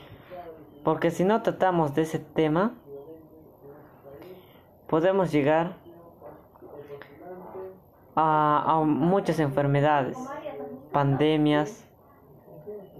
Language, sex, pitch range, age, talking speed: Spanish, female, 140-170 Hz, 20-39, 65 wpm